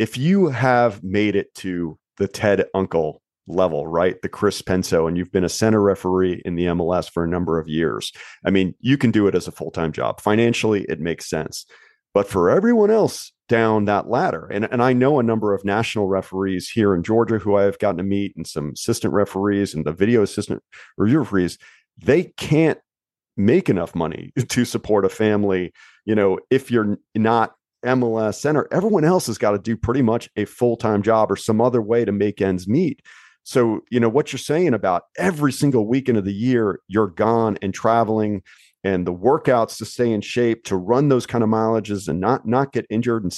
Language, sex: English, male